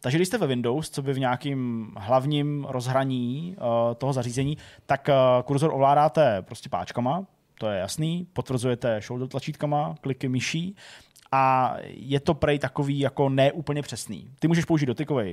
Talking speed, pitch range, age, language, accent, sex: 150 wpm, 120-145 Hz, 20-39, Czech, native, male